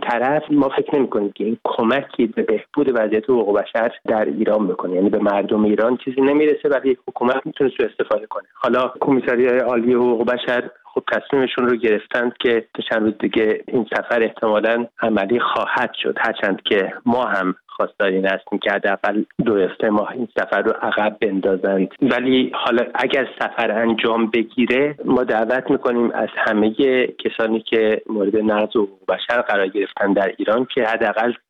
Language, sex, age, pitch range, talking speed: Persian, male, 30-49, 110-130 Hz, 170 wpm